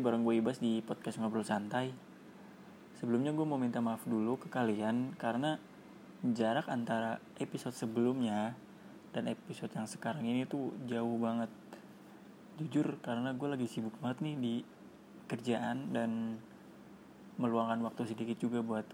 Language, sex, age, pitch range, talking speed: Indonesian, male, 20-39, 110-130 Hz, 135 wpm